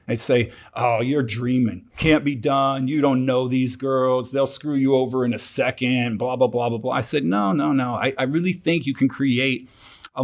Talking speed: 225 wpm